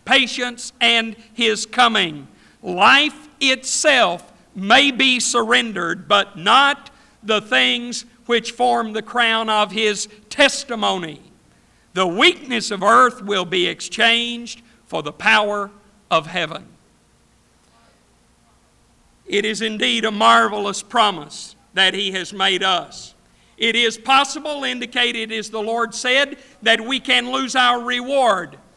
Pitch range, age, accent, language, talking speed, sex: 215-260 Hz, 50-69, American, English, 120 wpm, male